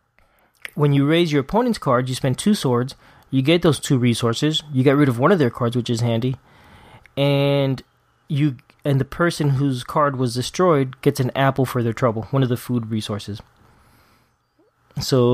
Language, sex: English, male